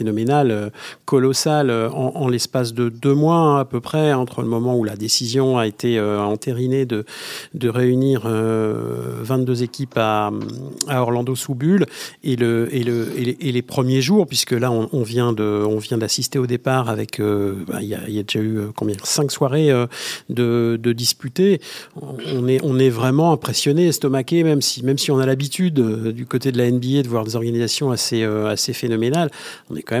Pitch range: 115-135 Hz